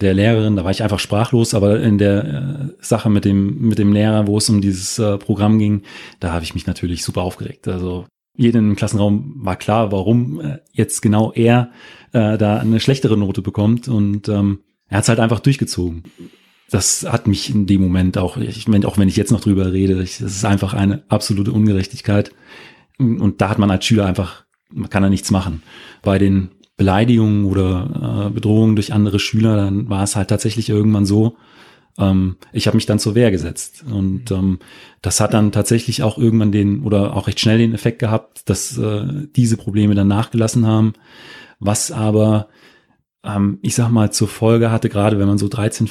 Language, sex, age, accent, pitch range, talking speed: German, male, 30-49, German, 100-115 Hz, 195 wpm